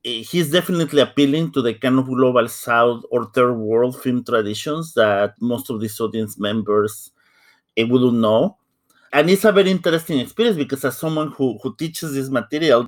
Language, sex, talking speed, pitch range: English, male, 170 wpm, 110-135 Hz